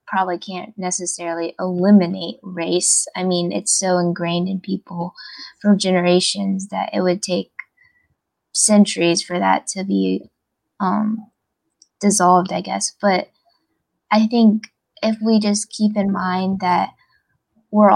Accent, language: American, English